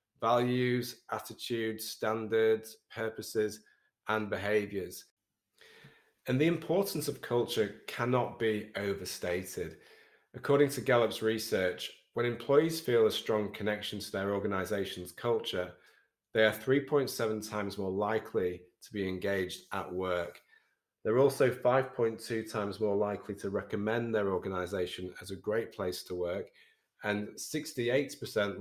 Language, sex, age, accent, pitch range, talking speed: English, male, 30-49, British, 95-115 Hz, 120 wpm